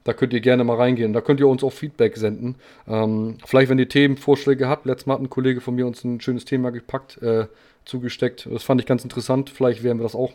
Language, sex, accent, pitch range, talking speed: German, male, German, 115-130 Hz, 250 wpm